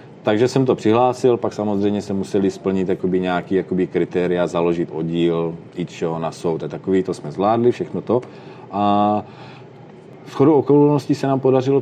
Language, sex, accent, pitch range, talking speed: Czech, male, native, 95-110 Hz, 150 wpm